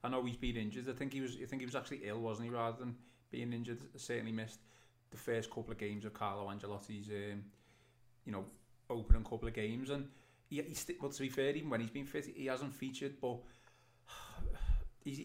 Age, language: 30-49, English